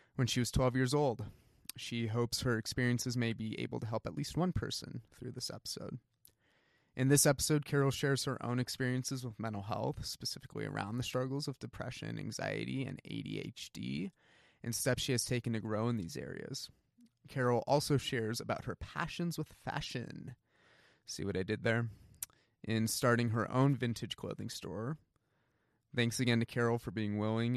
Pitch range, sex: 110-140 Hz, male